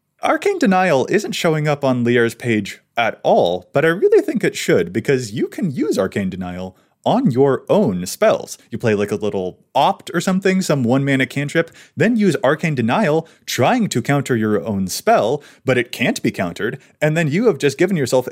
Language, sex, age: English, male, 30-49